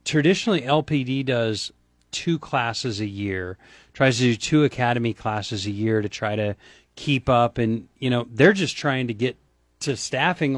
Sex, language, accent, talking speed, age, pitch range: male, English, American, 170 wpm, 40-59, 115-145 Hz